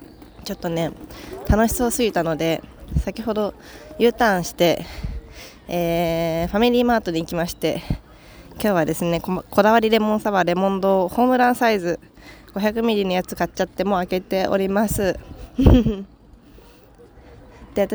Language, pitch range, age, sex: Japanese, 165-220 Hz, 20-39, female